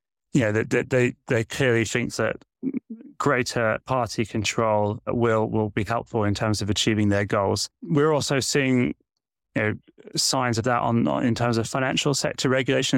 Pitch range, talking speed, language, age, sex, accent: 110-125 Hz, 165 wpm, English, 20-39, male, British